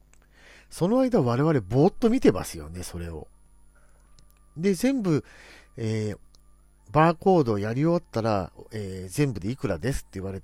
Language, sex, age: Japanese, male, 40-59